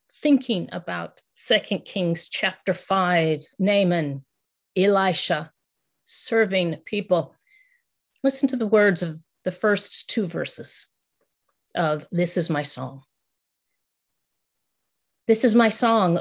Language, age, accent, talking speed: English, 40-59, American, 105 wpm